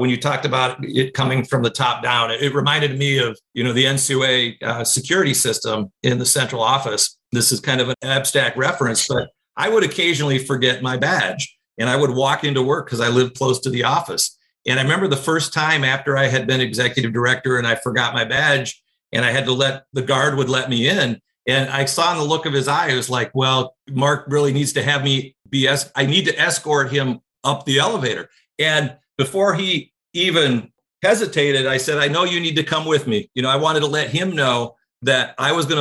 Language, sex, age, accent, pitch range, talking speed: English, male, 50-69, American, 125-145 Hz, 230 wpm